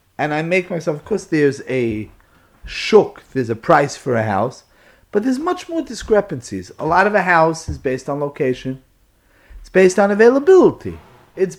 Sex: male